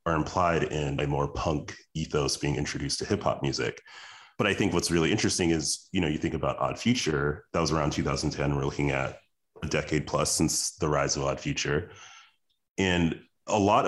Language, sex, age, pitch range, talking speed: English, male, 30-49, 75-90 Hz, 195 wpm